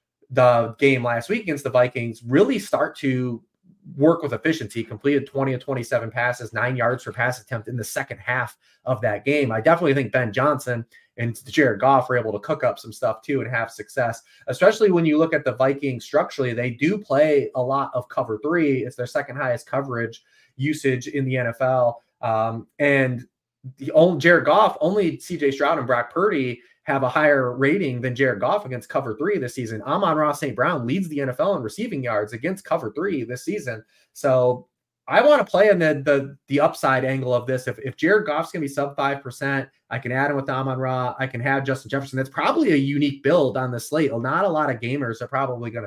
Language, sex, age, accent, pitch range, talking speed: English, male, 30-49, American, 120-145 Hz, 215 wpm